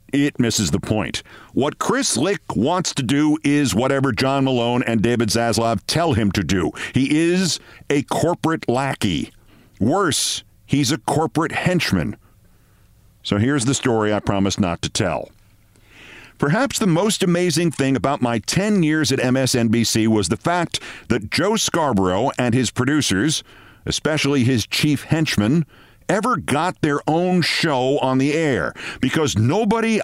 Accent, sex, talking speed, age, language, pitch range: American, male, 150 wpm, 50-69, English, 115-165 Hz